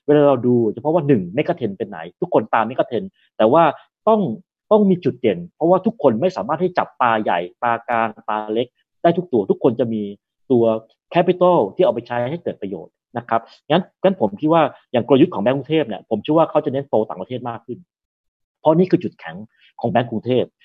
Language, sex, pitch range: Thai, male, 115-160 Hz